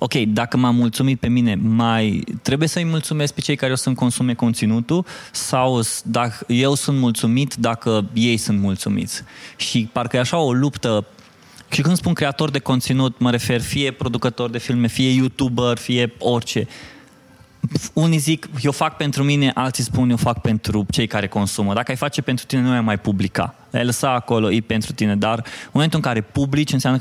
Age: 20-39